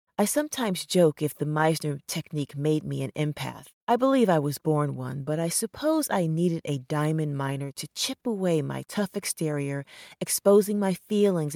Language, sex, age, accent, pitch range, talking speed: English, female, 40-59, American, 150-190 Hz, 175 wpm